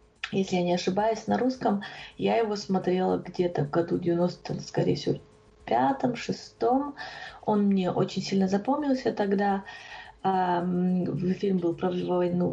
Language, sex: Russian, female